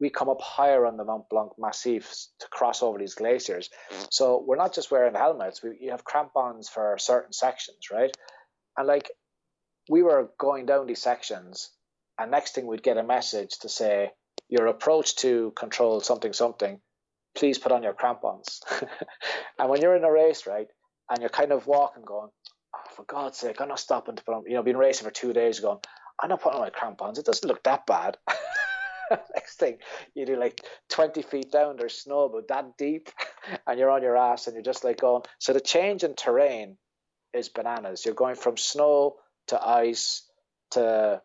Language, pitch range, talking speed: English, 115-160 Hz, 195 wpm